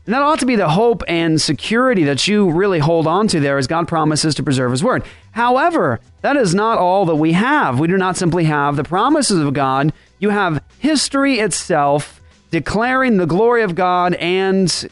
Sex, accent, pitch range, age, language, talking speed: male, American, 155-210 Hz, 30-49, English, 200 wpm